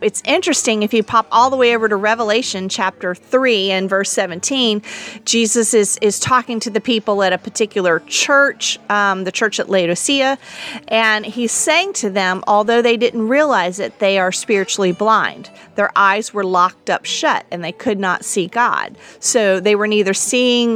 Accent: American